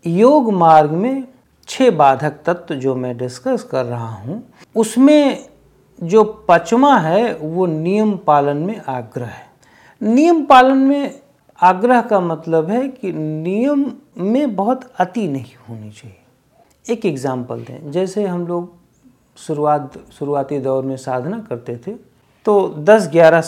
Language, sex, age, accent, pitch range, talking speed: Hindi, male, 50-69, native, 145-205 Hz, 135 wpm